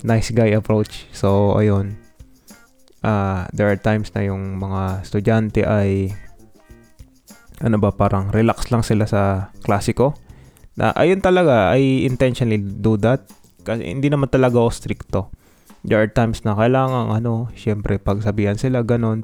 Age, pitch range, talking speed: 20-39, 100-120 Hz, 140 wpm